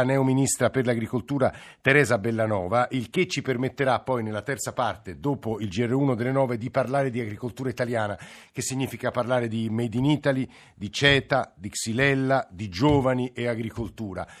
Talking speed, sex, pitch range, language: 160 wpm, male, 110-130 Hz, Italian